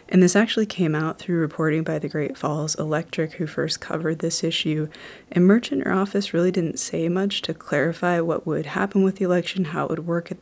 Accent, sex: American, female